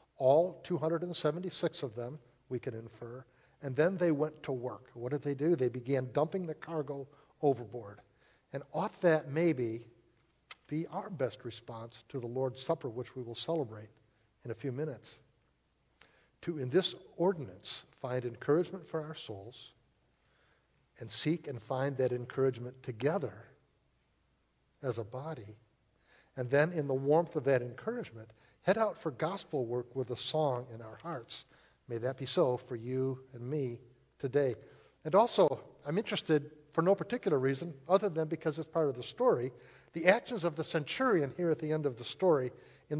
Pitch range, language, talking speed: 120-160 Hz, English, 165 wpm